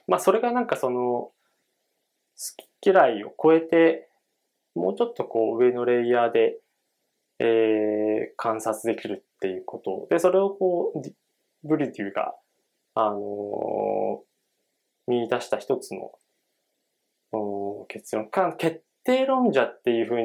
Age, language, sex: 20-39, Japanese, male